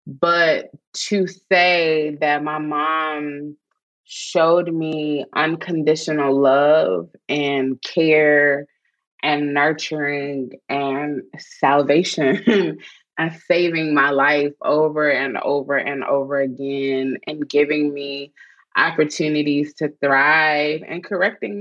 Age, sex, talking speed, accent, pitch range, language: 20-39, female, 95 wpm, American, 145-175 Hz, English